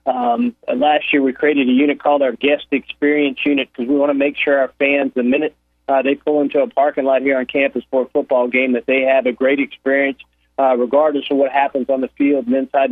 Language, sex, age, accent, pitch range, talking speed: English, male, 40-59, American, 135-150 Hz, 245 wpm